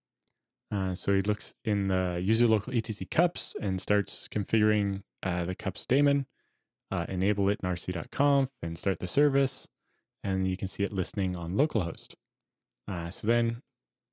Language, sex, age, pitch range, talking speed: English, male, 20-39, 95-125 Hz, 155 wpm